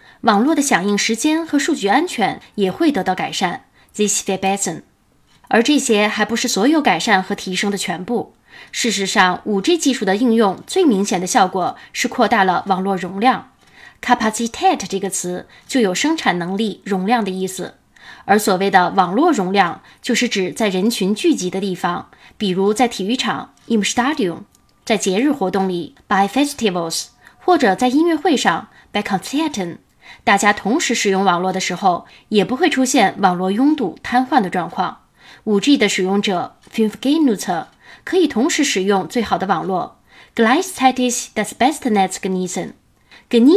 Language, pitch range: Chinese, 190-255 Hz